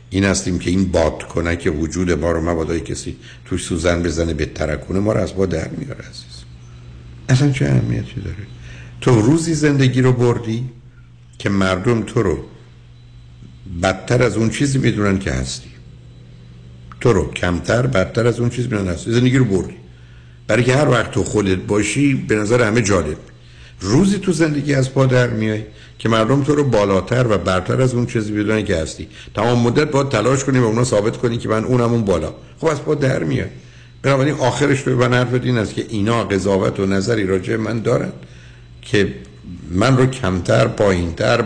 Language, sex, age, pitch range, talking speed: Persian, male, 60-79, 75-125 Hz, 180 wpm